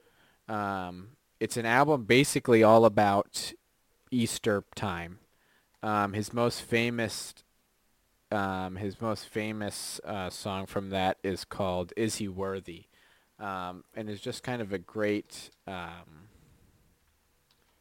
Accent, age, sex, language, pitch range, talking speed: American, 20-39, male, English, 95-110 Hz, 120 wpm